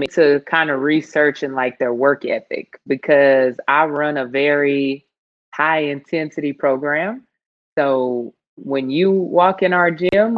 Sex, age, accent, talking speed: female, 20-39, American, 140 wpm